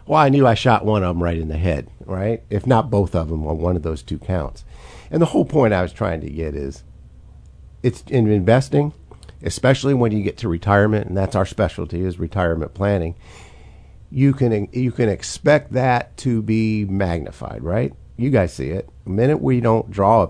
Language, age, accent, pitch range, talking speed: English, 50-69, American, 80-110 Hz, 205 wpm